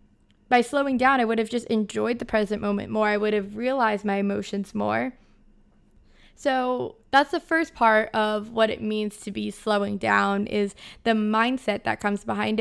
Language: English